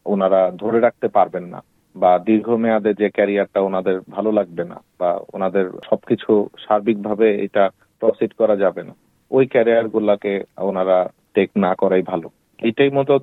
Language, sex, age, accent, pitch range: Bengali, male, 40-59, native, 95-110 Hz